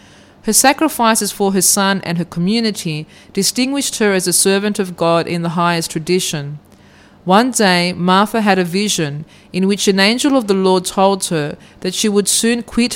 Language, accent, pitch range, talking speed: English, Australian, 175-210 Hz, 180 wpm